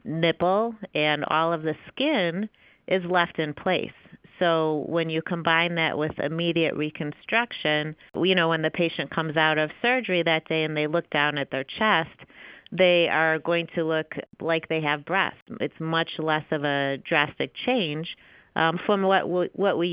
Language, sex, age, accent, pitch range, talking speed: English, female, 40-59, American, 150-170 Hz, 175 wpm